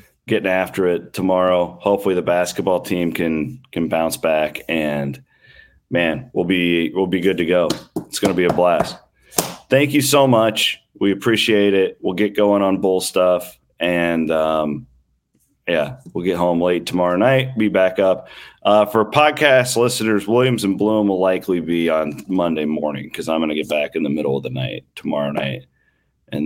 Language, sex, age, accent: English, male, 30-49, American